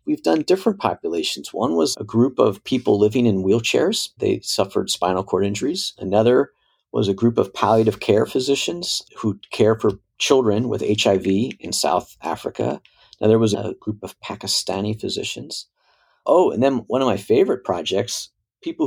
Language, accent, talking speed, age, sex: English, American, 165 wpm, 40-59, male